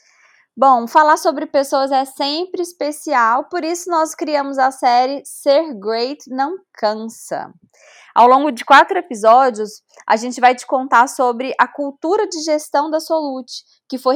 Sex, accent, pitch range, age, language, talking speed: female, Brazilian, 235-305 Hz, 20-39, Portuguese, 155 wpm